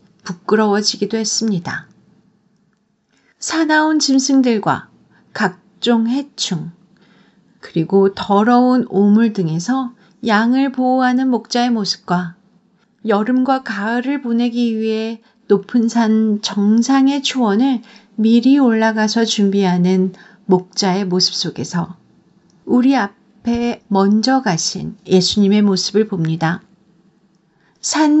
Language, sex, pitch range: Korean, female, 190-235 Hz